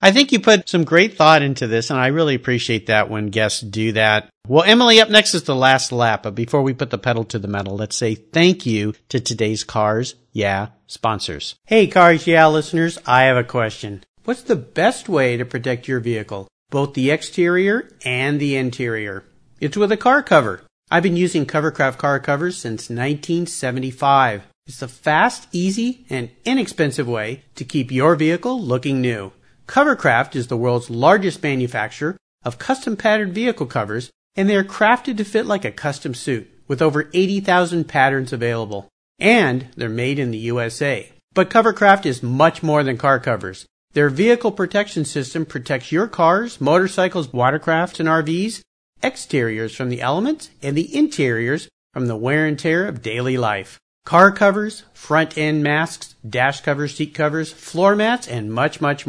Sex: male